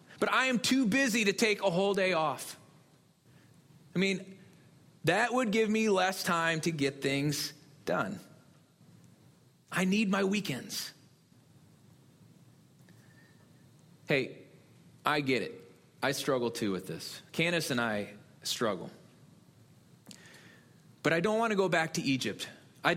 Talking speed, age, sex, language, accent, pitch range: 130 wpm, 30-49, male, English, American, 150-195 Hz